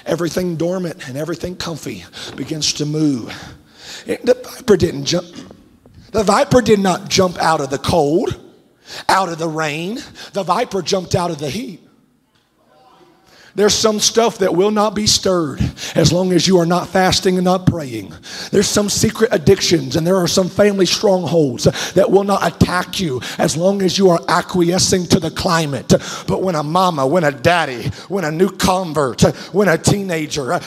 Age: 40-59